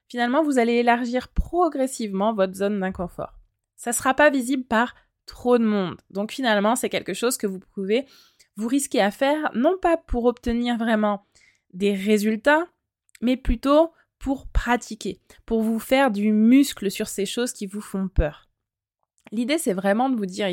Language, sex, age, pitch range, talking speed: French, female, 20-39, 205-260 Hz, 170 wpm